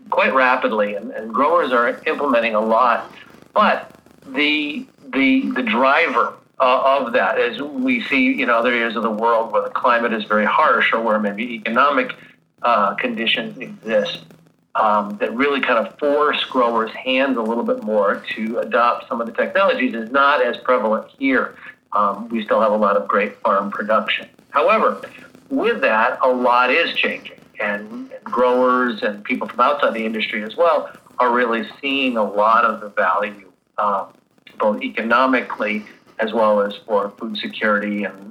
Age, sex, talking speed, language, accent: 50-69, male, 175 wpm, English, American